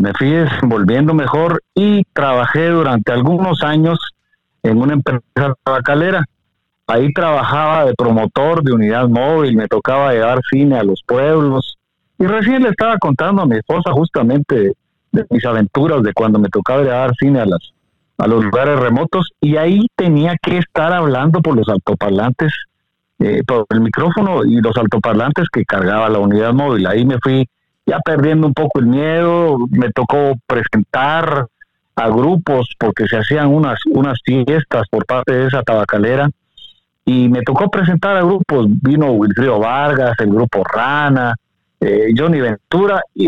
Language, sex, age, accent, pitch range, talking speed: Spanish, male, 50-69, Mexican, 120-170 Hz, 160 wpm